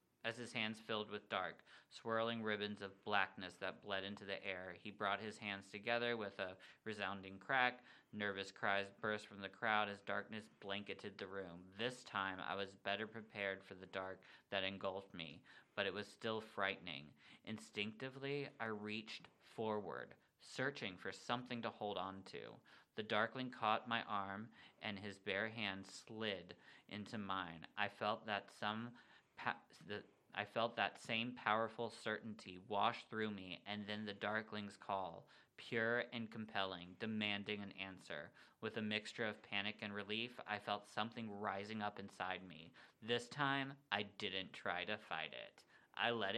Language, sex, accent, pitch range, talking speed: English, male, American, 100-115 Hz, 160 wpm